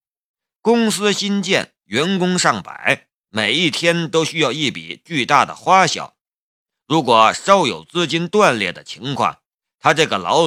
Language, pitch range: Chinese, 145-190 Hz